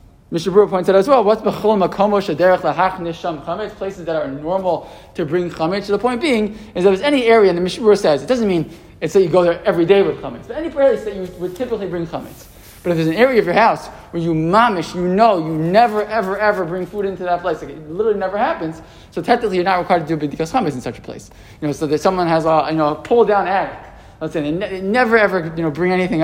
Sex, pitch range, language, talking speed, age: male, 160-205 Hz, English, 255 wpm, 20-39